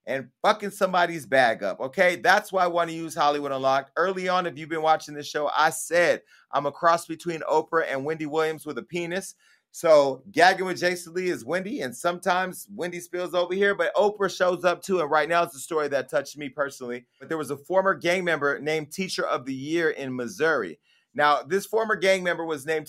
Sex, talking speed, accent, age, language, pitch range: male, 220 wpm, American, 30-49, English, 155-195 Hz